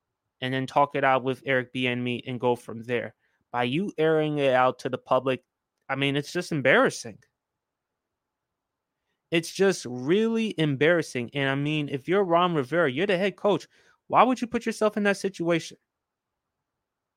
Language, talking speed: English, 175 wpm